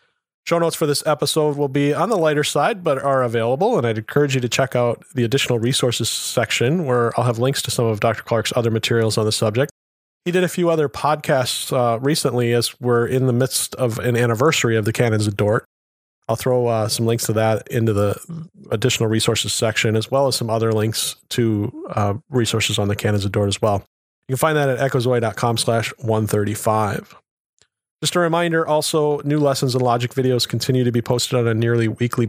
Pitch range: 110-140 Hz